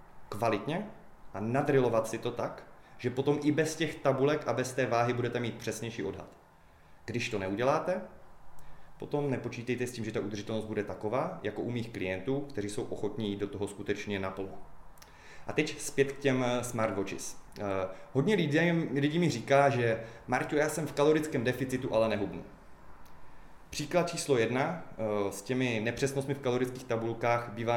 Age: 30-49